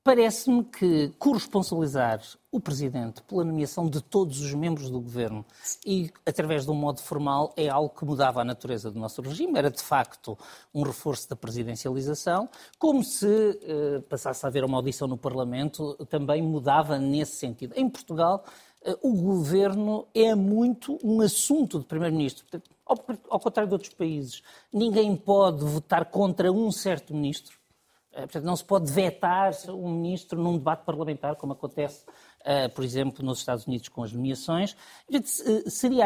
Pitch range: 145-210 Hz